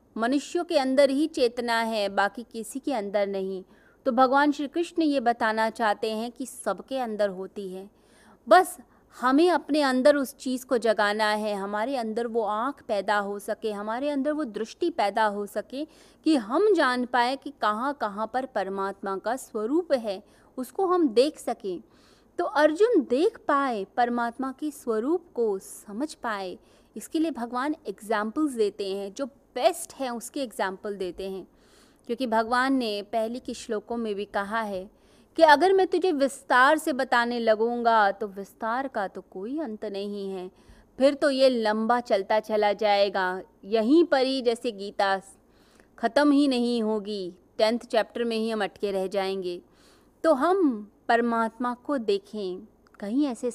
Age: 20-39